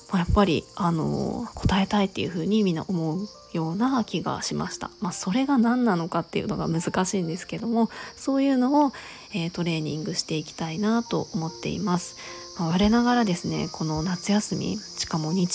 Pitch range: 175-215 Hz